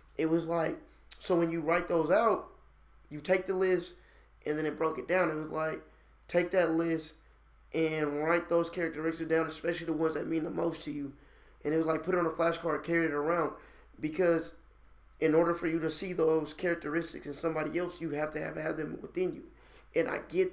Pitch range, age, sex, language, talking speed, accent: 155-180 Hz, 20-39, male, English, 215 wpm, American